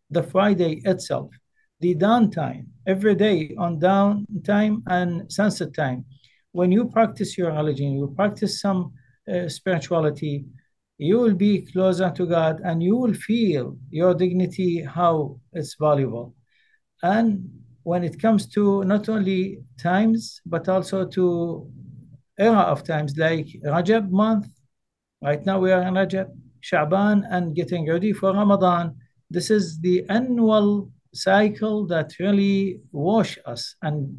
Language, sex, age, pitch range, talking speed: English, male, 60-79, 160-200 Hz, 135 wpm